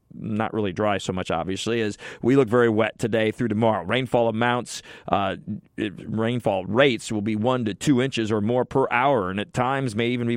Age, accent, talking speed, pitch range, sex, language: 40-59, American, 205 wpm, 115-135 Hz, male, English